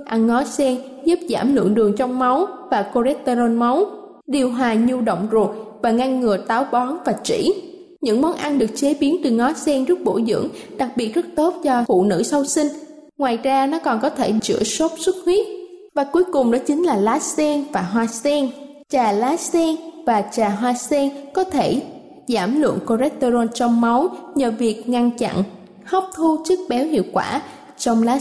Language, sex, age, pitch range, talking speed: Vietnamese, female, 10-29, 240-320 Hz, 195 wpm